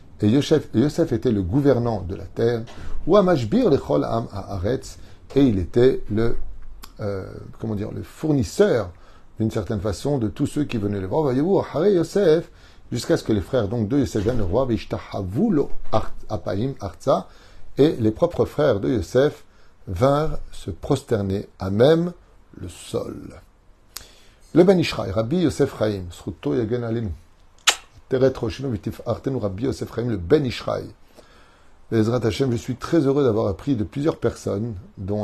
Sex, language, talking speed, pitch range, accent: male, French, 115 wpm, 95-120 Hz, French